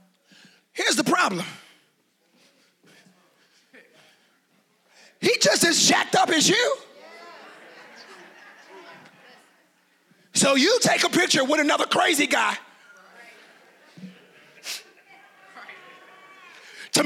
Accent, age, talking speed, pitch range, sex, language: American, 30-49, 70 wpm, 265-385 Hz, male, English